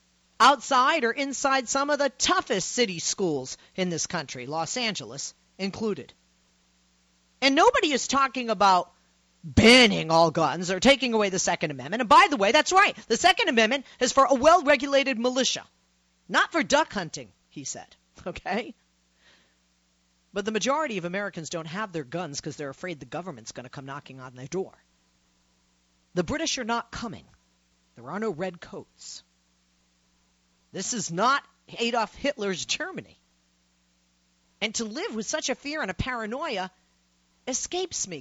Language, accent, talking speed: English, American, 155 wpm